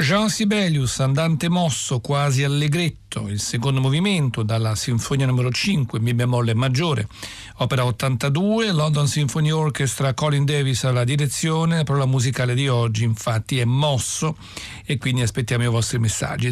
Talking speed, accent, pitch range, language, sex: 140 wpm, native, 120-155 Hz, Italian, male